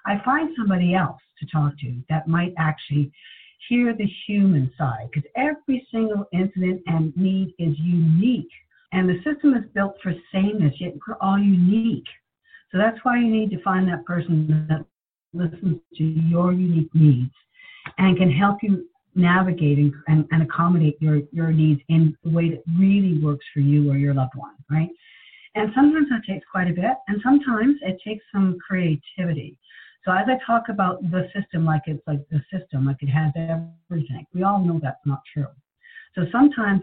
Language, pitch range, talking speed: English, 155-200 Hz, 180 wpm